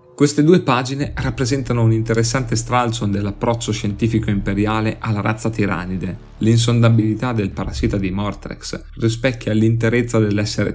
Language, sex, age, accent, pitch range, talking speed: Italian, male, 30-49, native, 100-125 Hz, 115 wpm